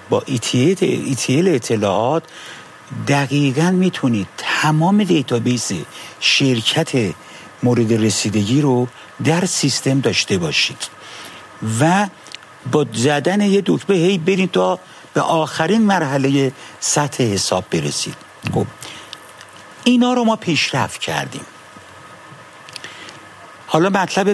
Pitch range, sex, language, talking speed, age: 120-165 Hz, male, Persian, 85 wpm, 60-79